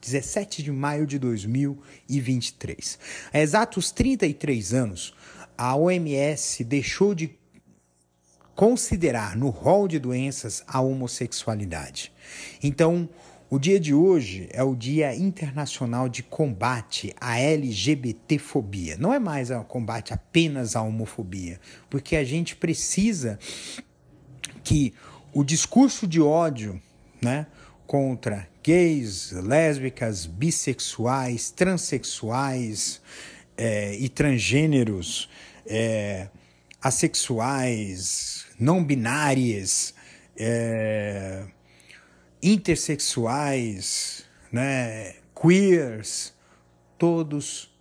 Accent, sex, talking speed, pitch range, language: Brazilian, male, 80 wpm, 110-150 Hz, Portuguese